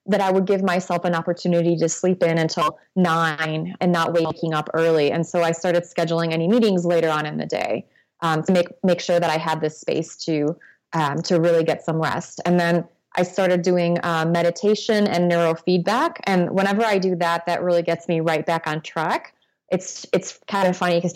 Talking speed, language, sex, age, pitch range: 215 wpm, English, female, 20-39, 165-190 Hz